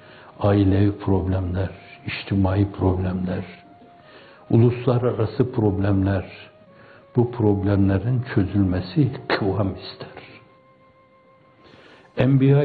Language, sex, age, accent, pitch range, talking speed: Turkish, male, 60-79, native, 95-115 Hz, 55 wpm